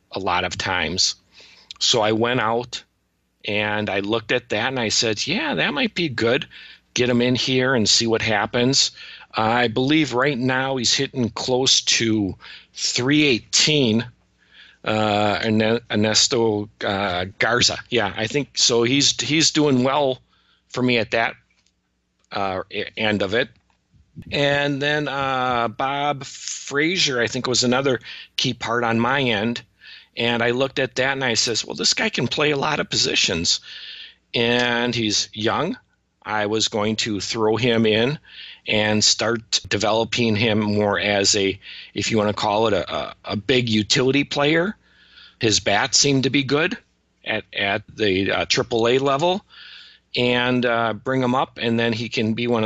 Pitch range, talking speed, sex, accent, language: 110-135 Hz, 165 wpm, male, American, English